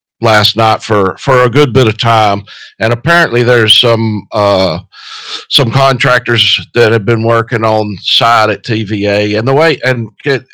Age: 50-69